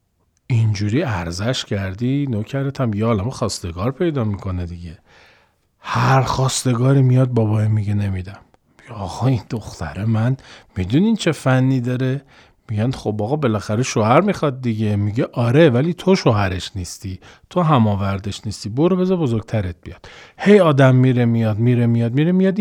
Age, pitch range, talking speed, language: 40-59, 110-160 Hz, 140 wpm, Persian